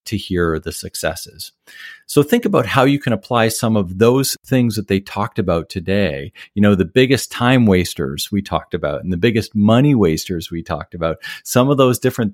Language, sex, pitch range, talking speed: English, male, 95-120 Hz, 200 wpm